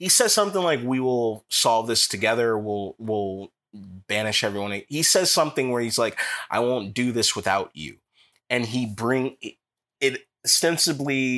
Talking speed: 160 wpm